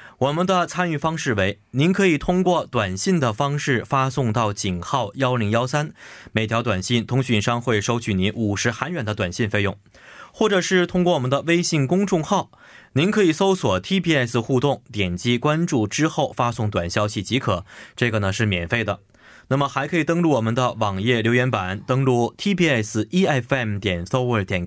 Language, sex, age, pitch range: Korean, male, 20-39, 110-155 Hz